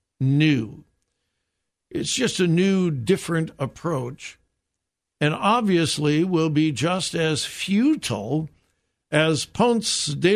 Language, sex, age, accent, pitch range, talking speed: English, male, 60-79, American, 145-210 Hz, 100 wpm